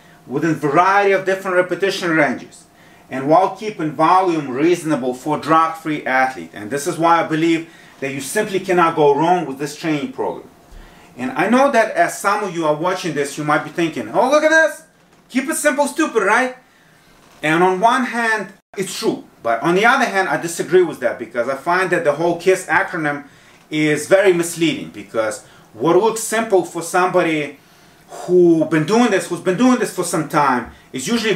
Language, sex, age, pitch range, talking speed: English, male, 30-49, 155-185 Hz, 185 wpm